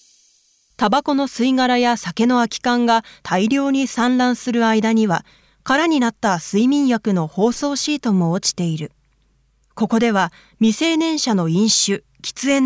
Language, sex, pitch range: Japanese, female, 185-255 Hz